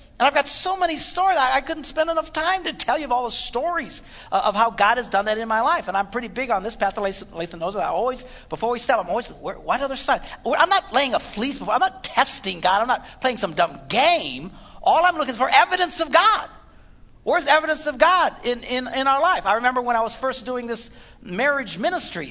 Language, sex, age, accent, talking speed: English, male, 50-69, American, 240 wpm